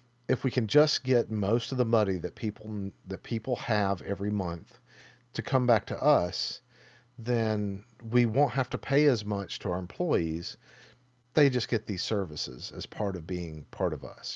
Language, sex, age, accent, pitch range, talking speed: English, male, 40-59, American, 95-125 Hz, 185 wpm